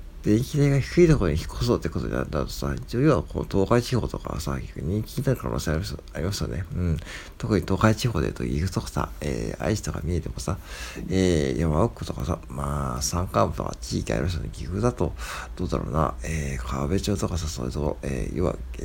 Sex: male